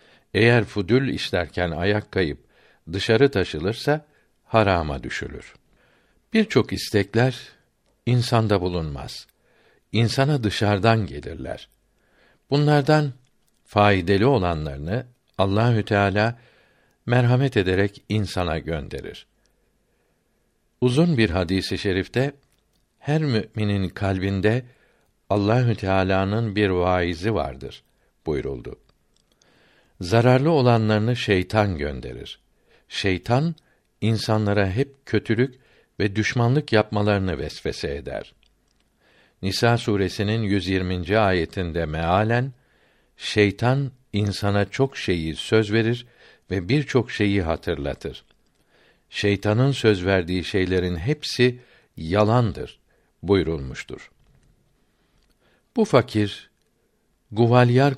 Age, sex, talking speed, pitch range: 60-79, male, 80 wpm, 95-120 Hz